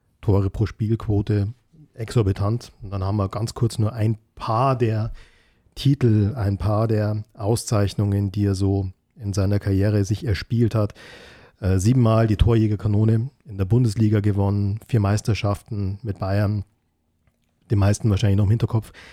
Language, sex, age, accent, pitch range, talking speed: German, male, 40-59, German, 100-115 Hz, 140 wpm